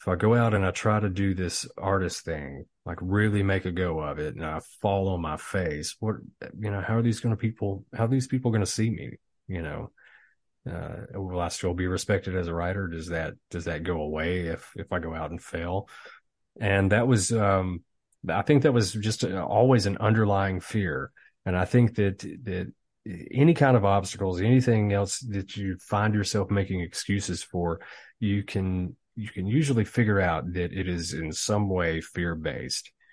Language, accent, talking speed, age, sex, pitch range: English, American, 205 wpm, 30-49, male, 90-105 Hz